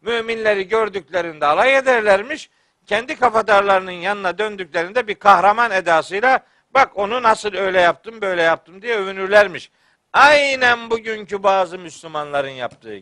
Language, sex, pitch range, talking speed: Turkish, male, 180-240 Hz, 115 wpm